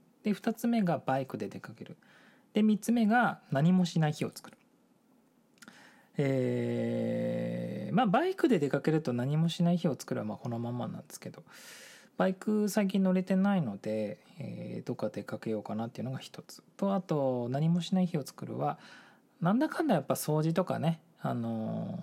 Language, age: Japanese, 20-39